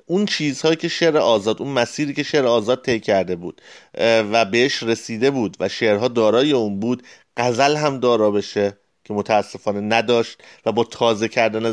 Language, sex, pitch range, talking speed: Persian, male, 115-150 Hz, 170 wpm